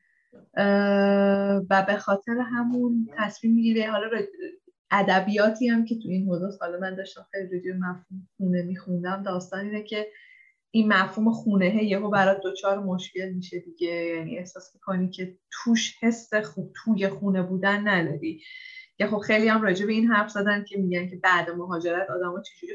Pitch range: 190-225 Hz